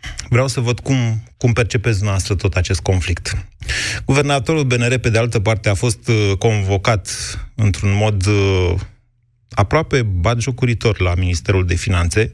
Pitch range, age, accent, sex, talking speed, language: 100-120 Hz, 30-49, native, male, 130 wpm, Romanian